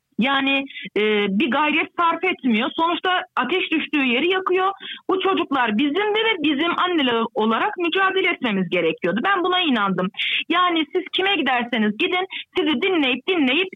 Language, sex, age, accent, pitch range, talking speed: Turkish, female, 40-59, native, 240-360 Hz, 145 wpm